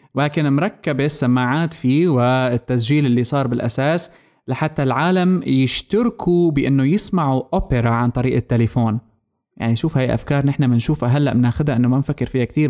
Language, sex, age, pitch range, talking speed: Arabic, male, 20-39, 125-155 Hz, 140 wpm